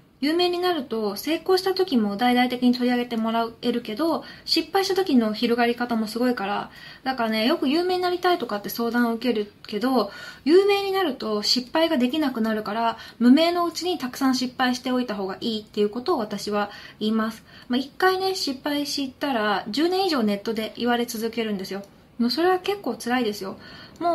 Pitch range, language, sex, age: 215-285 Hz, Japanese, female, 20-39